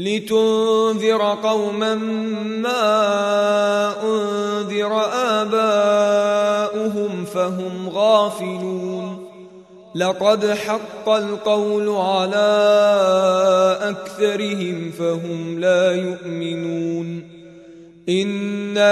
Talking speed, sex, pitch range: 50 wpm, male, 185-210 Hz